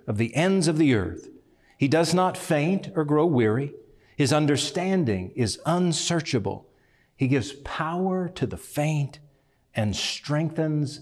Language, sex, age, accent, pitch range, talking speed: English, male, 50-69, American, 115-155 Hz, 135 wpm